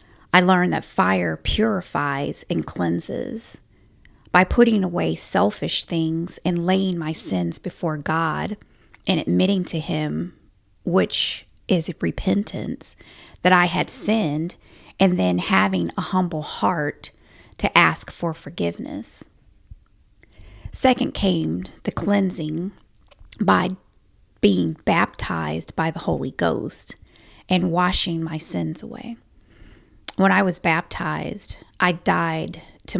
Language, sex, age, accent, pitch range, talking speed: English, female, 30-49, American, 135-180 Hz, 115 wpm